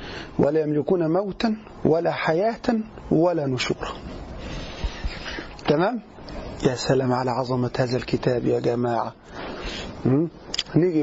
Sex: male